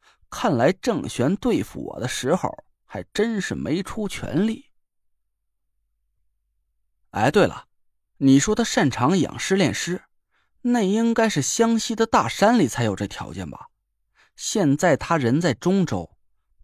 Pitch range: 140-230 Hz